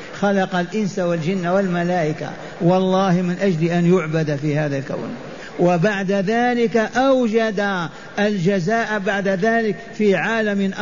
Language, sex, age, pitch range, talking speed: Arabic, male, 50-69, 175-210 Hz, 110 wpm